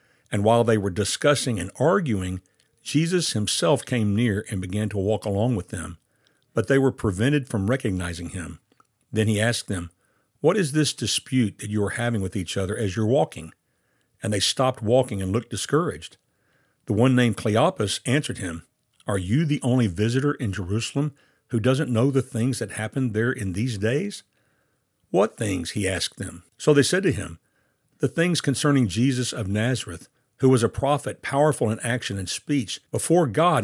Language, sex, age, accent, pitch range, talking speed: English, male, 60-79, American, 105-135 Hz, 180 wpm